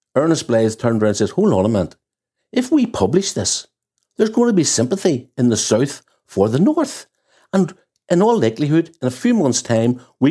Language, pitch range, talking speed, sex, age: English, 100-140 Hz, 205 wpm, male, 60-79